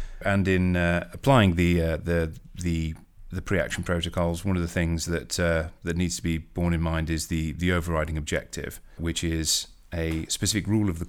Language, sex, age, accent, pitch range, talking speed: English, male, 30-49, British, 80-95 Hz, 195 wpm